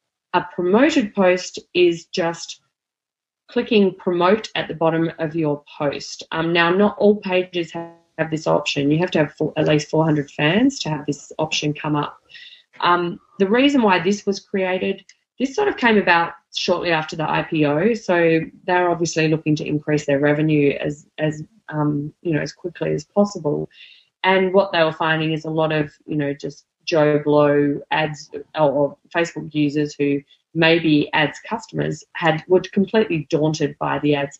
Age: 20-39